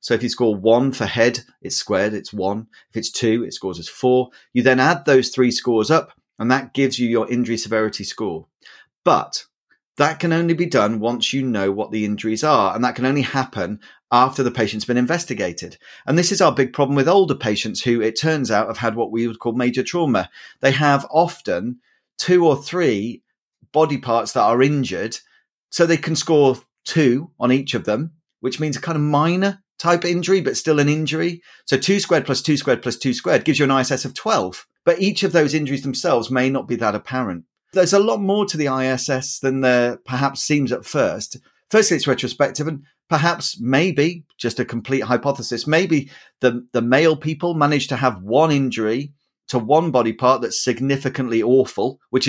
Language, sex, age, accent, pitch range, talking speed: English, male, 40-59, British, 120-155 Hz, 200 wpm